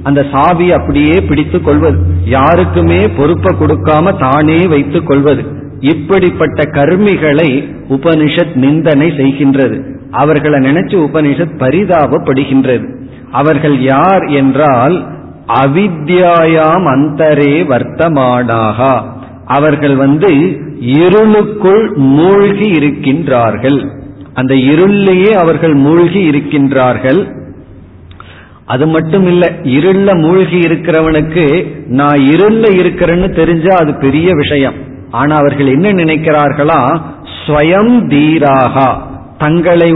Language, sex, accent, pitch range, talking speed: Tamil, male, native, 135-170 Hz, 80 wpm